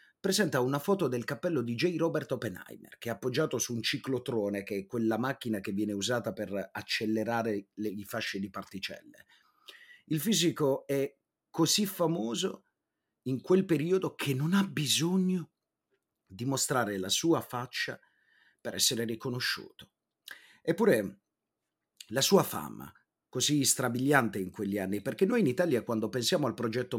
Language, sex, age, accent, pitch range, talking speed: Italian, male, 30-49, native, 105-150 Hz, 145 wpm